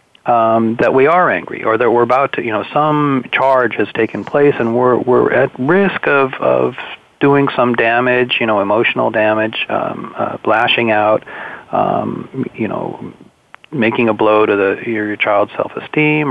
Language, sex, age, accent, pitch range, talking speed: English, male, 40-59, American, 110-140 Hz, 175 wpm